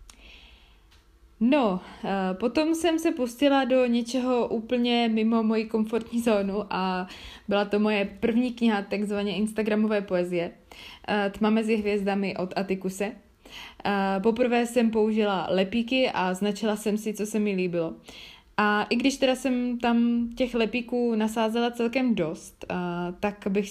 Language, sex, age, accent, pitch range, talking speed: Czech, female, 20-39, native, 190-220 Hz, 130 wpm